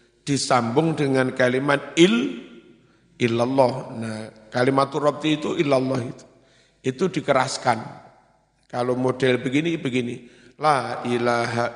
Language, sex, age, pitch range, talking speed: Indonesian, male, 50-69, 125-150 Hz, 95 wpm